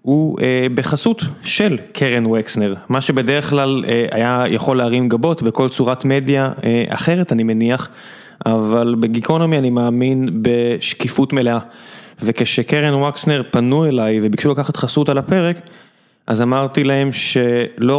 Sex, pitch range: male, 120-155 Hz